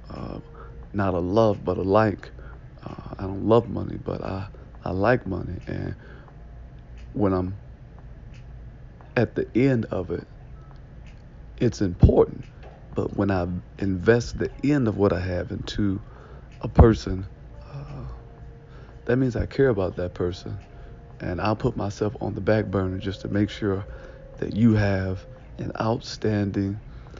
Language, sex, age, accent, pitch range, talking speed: English, male, 50-69, American, 100-115 Hz, 145 wpm